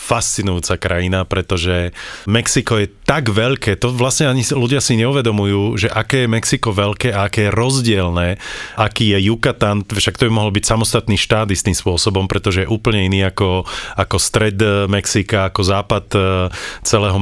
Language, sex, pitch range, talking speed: Slovak, male, 95-110 Hz, 160 wpm